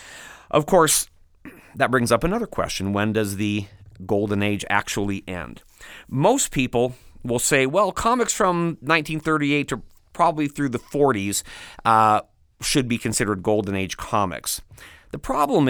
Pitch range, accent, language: 95-125 Hz, American, English